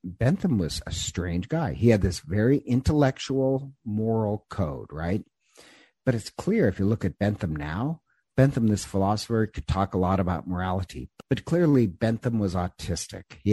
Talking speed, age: 165 wpm, 50-69